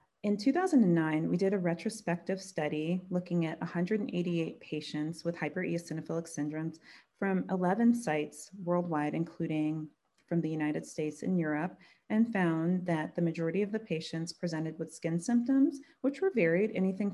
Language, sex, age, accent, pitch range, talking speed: English, female, 30-49, American, 160-195 Hz, 145 wpm